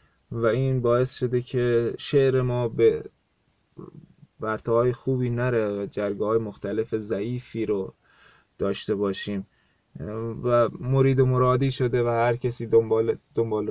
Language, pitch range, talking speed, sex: Persian, 115-135 Hz, 125 wpm, male